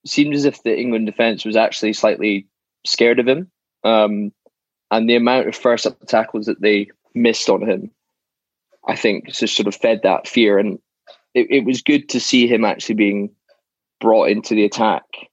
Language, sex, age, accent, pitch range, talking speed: English, male, 20-39, British, 105-125 Hz, 180 wpm